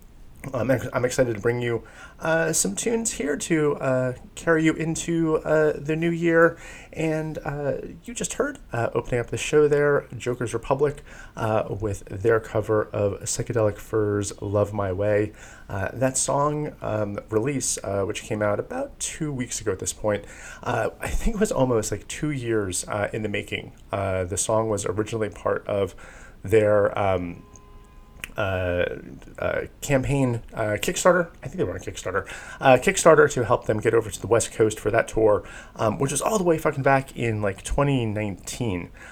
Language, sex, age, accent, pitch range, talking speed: English, male, 30-49, American, 105-155 Hz, 180 wpm